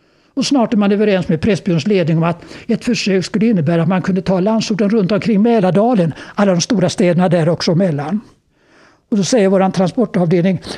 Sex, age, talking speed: male, 60-79, 190 wpm